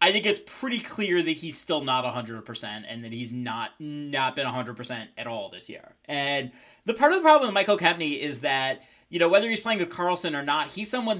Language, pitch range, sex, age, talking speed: English, 135-190 Hz, male, 30-49, 230 wpm